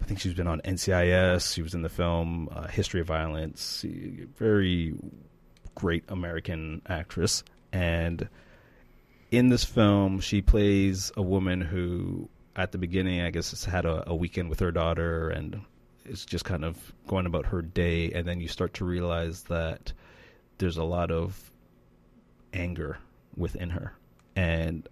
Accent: American